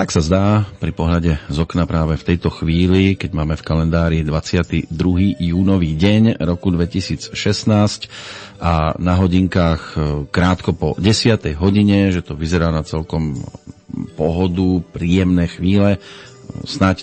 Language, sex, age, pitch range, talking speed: Slovak, male, 40-59, 85-100 Hz, 125 wpm